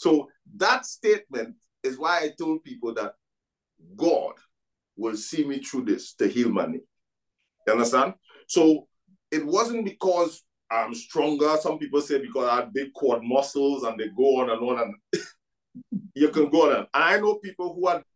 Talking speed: 175 wpm